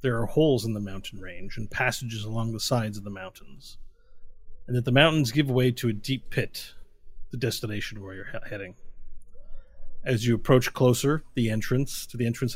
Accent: American